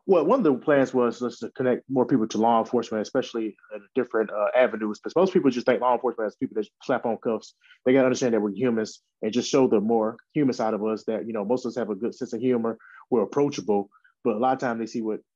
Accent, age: American, 20-39